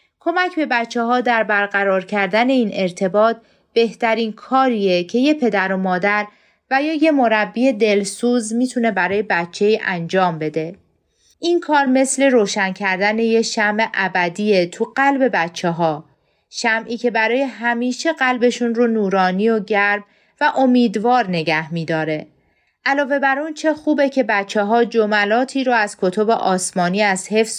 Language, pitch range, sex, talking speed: Persian, 190-250 Hz, female, 145 wpm